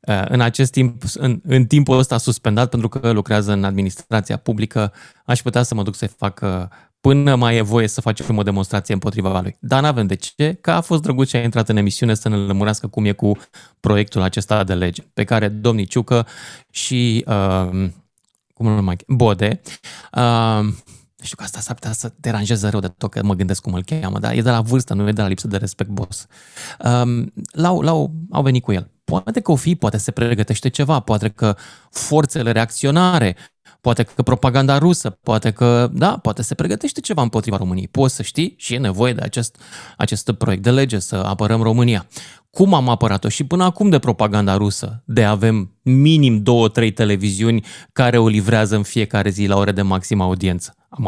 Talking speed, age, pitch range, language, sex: 200 wpm, 20-39, 105-130 Hz, Romanian, male